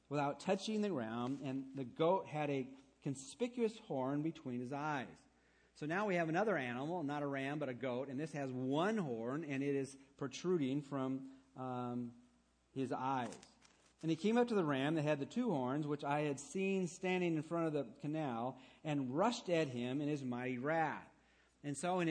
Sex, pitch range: male, 130-165 Hz